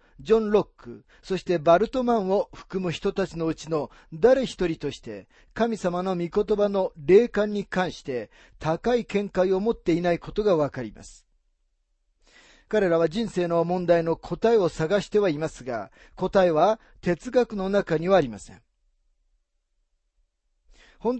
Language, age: Japanese, 40-59